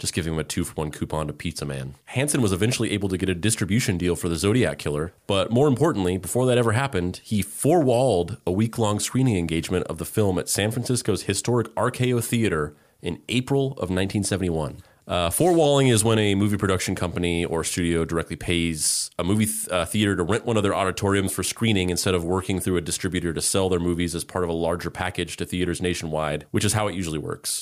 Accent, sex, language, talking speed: American, male, English, 215 wpm